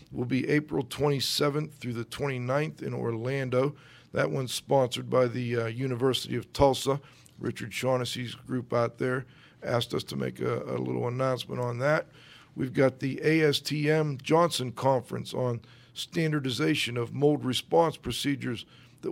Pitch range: 120-145 Hz